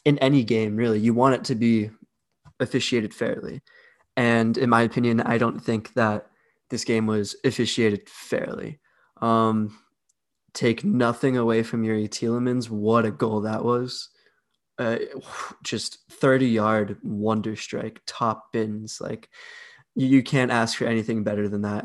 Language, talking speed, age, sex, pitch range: English, 145 wpm, 20-39, male, 110-125 Hz